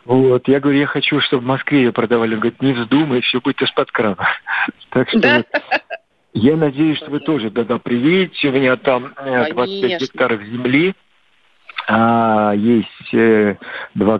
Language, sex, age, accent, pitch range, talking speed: Russian, male, 50-69, native, 110-140 Hz, 150 wpm